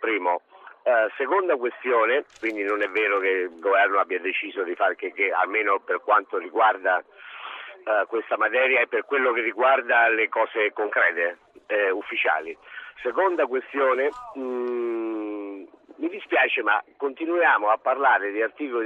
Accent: native